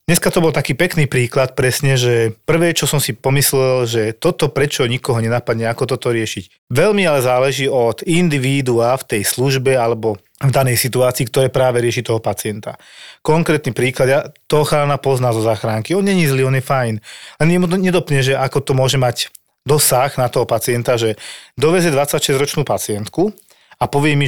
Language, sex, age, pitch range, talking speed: Slovak, male, 40-59, 120-150 Hz, 175 wpm